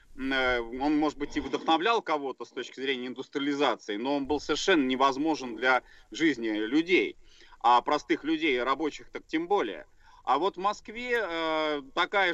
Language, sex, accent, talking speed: Russian, male, native, 145 wpm